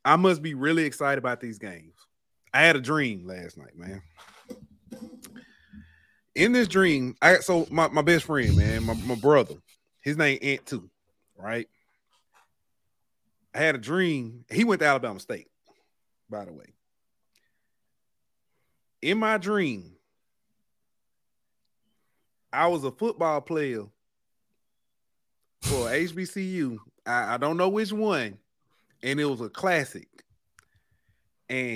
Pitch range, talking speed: 120-165 Hz, 125 wpm